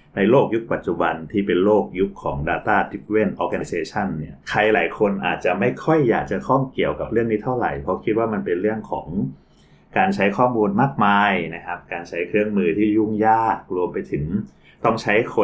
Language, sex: Thai, male